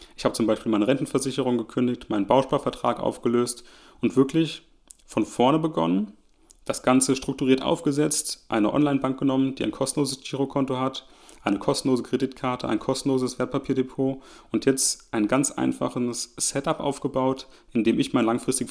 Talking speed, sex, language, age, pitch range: 145 wpm, male, German, 30-49, 110-135 Hz